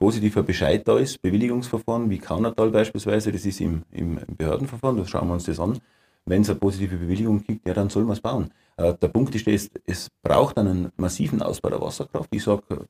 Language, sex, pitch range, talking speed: German, male, 95-110 Hz, 215 wpm